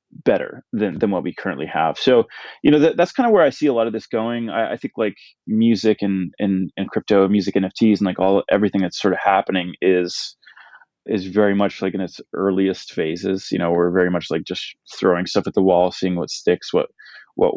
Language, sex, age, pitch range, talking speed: English, male, 20-39, 95-115 Hz, 230 wpm